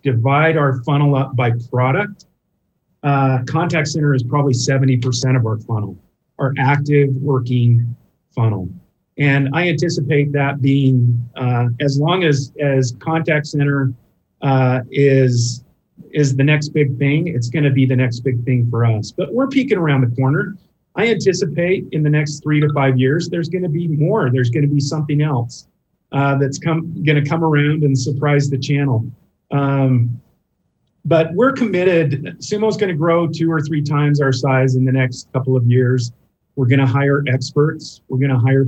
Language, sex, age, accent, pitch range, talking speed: English, male, 40-59, American, 130-150 Hz, 170 wpm